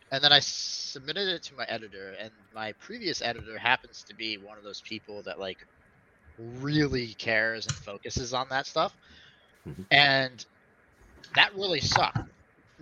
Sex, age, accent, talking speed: male, 30-49, American, 150 wpm